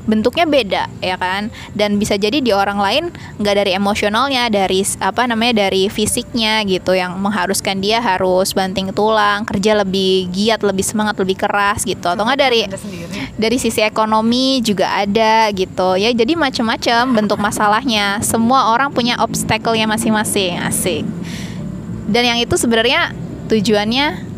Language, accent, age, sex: Indonesian, native, 20-39, female